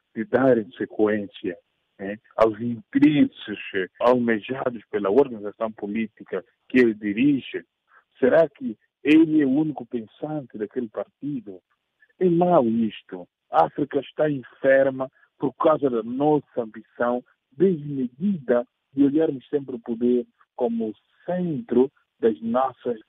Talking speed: 115 wpm